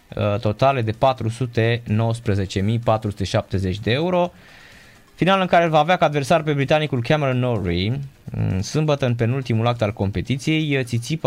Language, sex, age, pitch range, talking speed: Romanian, male, 20-39, 105-130 Hz, 130 wpm